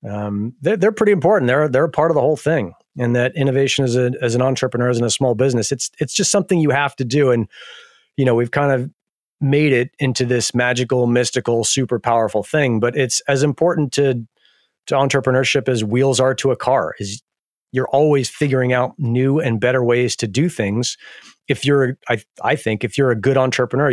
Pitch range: 120-145 Hz